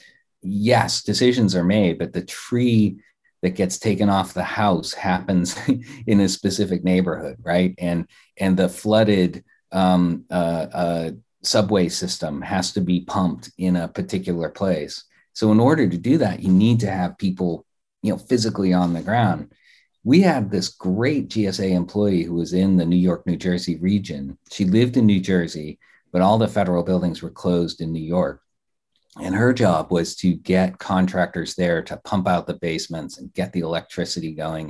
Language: English